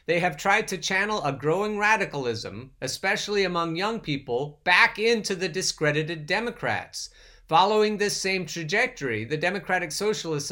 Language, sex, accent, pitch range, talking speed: English, male, American, 140-195 Hz, 135 wpm